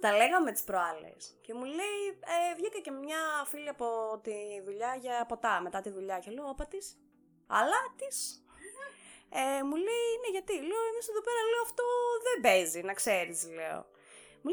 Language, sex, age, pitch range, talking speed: Greek, female, 20-39, 190-295 Hz, 170 wpm